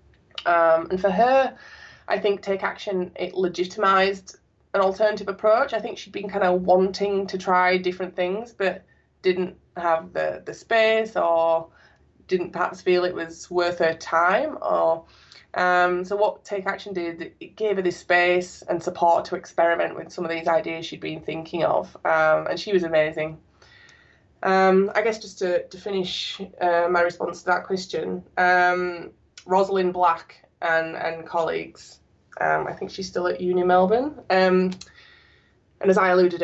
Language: English